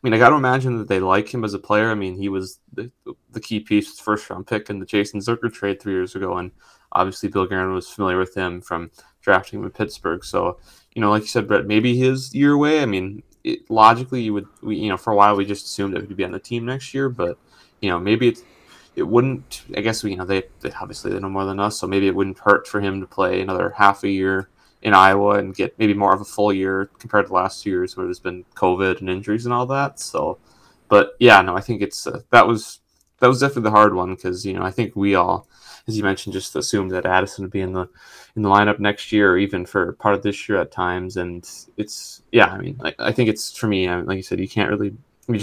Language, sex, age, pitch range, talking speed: English, male, 20-39, 95-110 Hz, 270 wpm